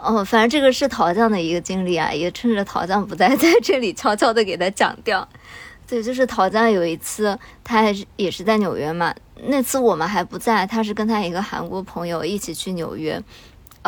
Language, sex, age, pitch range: Chinese, male, 20-39, 180-230 Hz